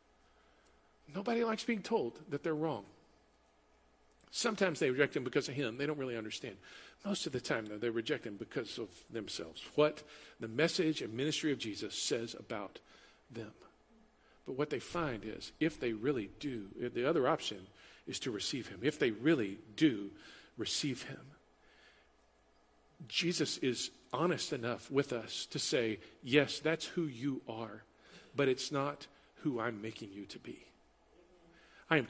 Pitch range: 130-185 Hz